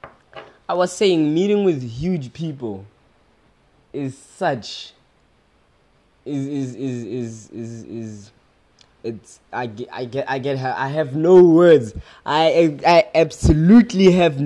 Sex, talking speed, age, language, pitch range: male, 135 wpm, 20-39, English, 125-170 Hz